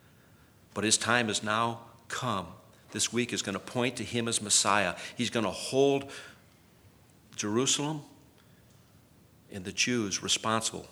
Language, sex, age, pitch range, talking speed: English, male, 50-69, 105-130 Hz, 135 wpm